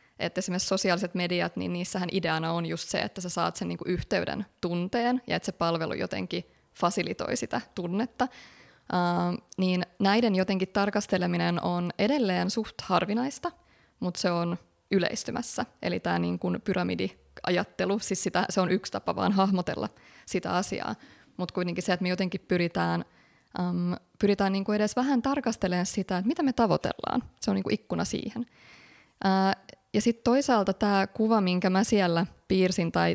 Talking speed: 155 wpm